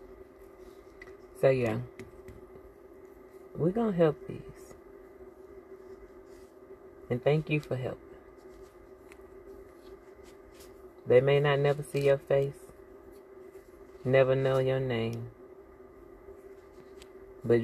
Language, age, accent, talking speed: English, 30-49, American, 80 wpm